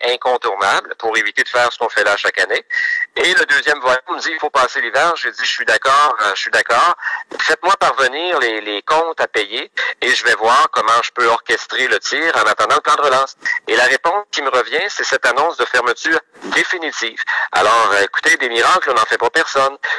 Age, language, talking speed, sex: 50-69, French, 220 wpm, male